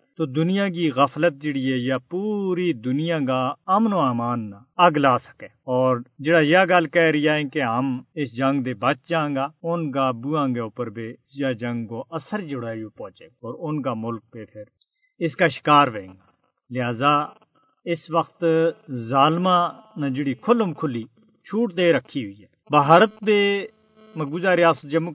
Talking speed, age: 165 wpm, 50-69